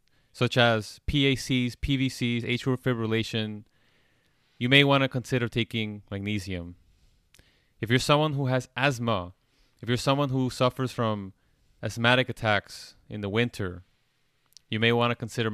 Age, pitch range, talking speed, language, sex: 30-49, 105-135 Hz, 135 wpm, English, male